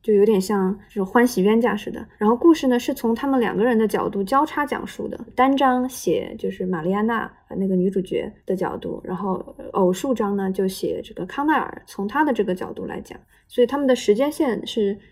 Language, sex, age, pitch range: Chinese, female, 20-39, 200-245 Hz